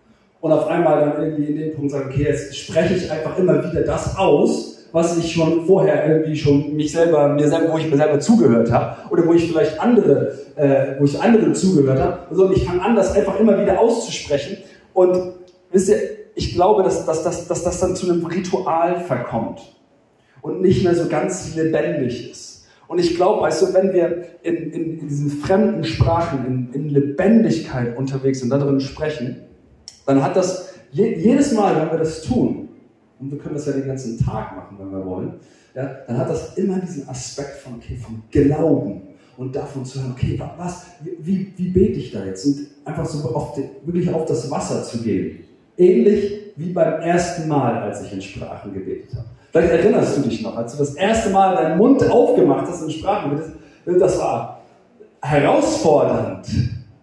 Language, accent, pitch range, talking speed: German, German, 140-180 Hz, 190 wpm